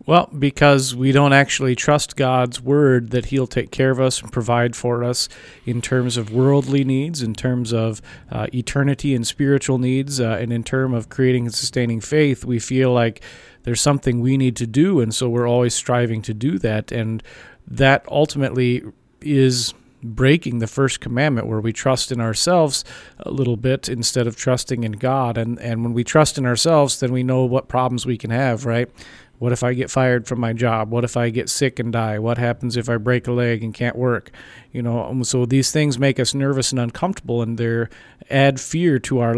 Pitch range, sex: 115-130 Hz, male